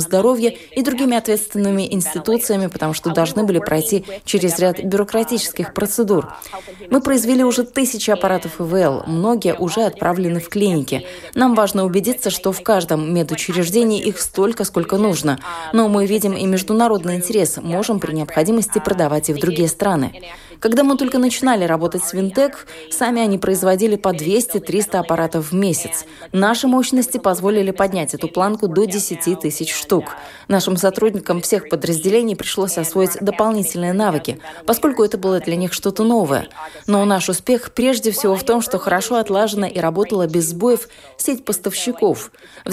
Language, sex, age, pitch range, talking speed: Russian, female, 20-39, 170-220 Hz, 150 wpm